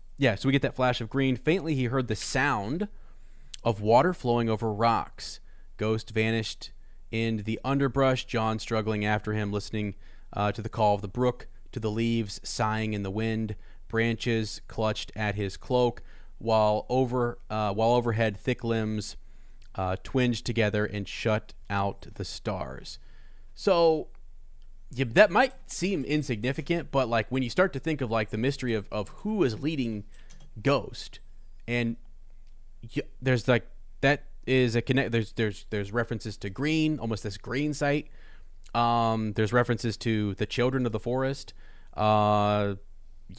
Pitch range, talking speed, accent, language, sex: 105-130 Hz, 155 wpm, American, English, male